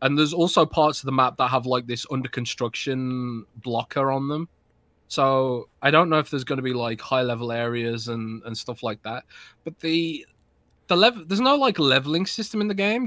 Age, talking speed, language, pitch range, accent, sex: 20-39, 210 wpm, English, 115-145 Hz, British, male